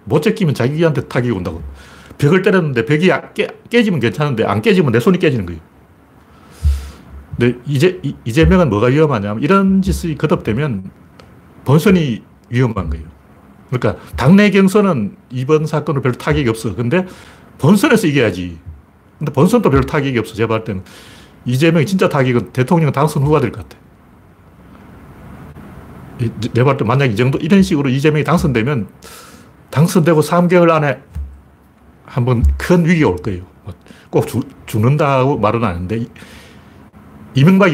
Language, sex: Korean, male